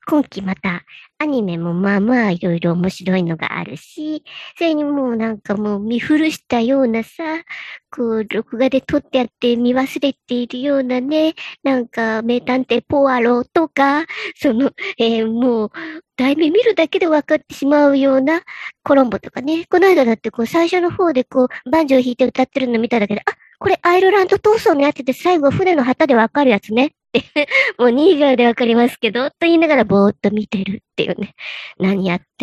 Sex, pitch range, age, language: male, 230-300 Hz, 40-59, Japanese